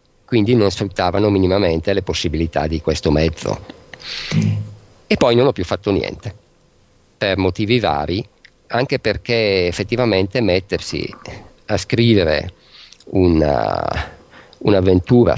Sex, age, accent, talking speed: male, 50-69, native, 100 wpm